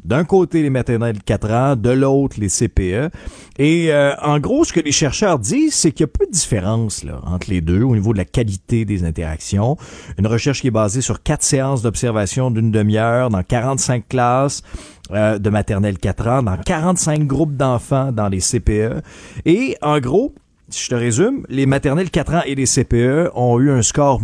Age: 40-59